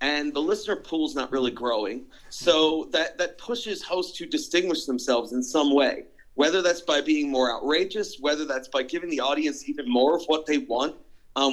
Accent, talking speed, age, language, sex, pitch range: American, 195 wpm, 40-59, English, male, 135-190 Hz